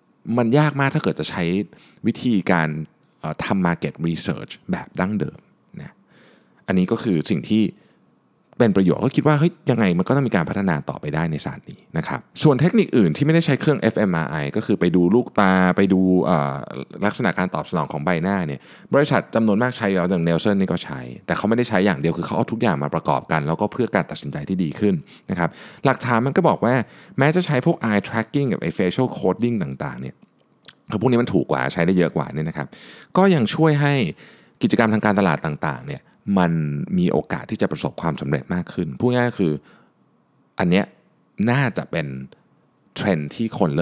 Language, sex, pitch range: Thai, male, 85-125 Hz